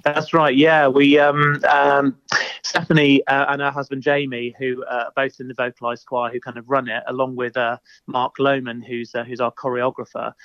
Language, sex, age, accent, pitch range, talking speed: English, male, 30-49, British, 120-140 Hz, 200 wpm